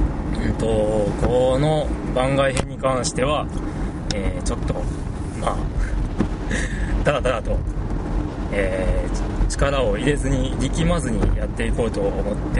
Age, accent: 20-39, native